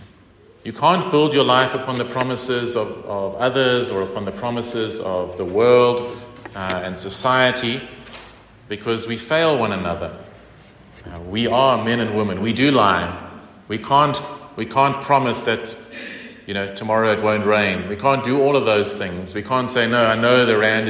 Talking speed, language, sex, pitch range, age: 180 wpm, English, male, 105-135 Hz, 40-59